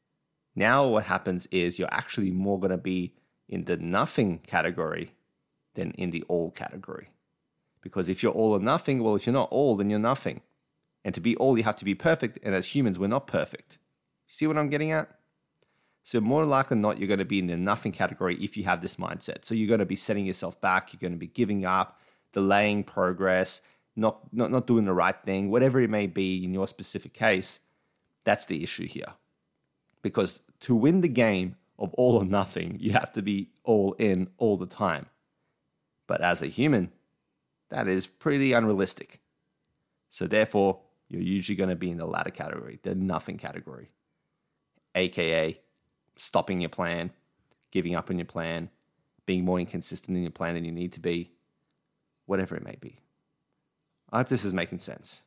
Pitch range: 90-110 Hz